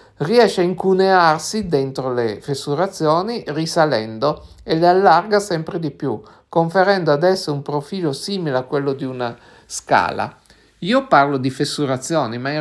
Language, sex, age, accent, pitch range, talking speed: Italian, male, 50-69, native, 140-185 Hz, 140 wpm